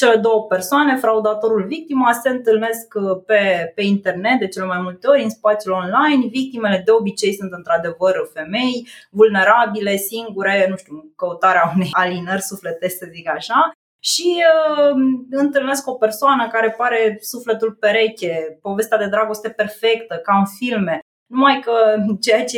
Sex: female